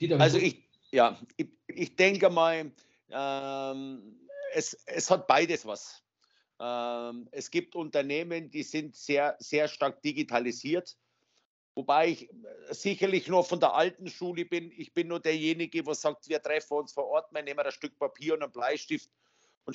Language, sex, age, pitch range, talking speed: German, male, 50-69, 135-170 Hz, 160 wpm